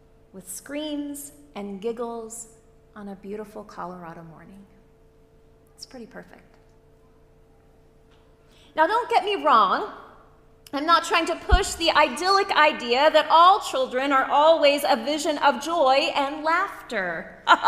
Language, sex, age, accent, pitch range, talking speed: English, female, 30-49, American, 220-340 Hz, 120 wpm